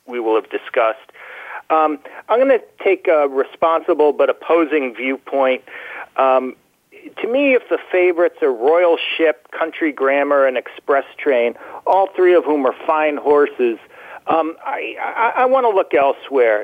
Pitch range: 150-230 Hz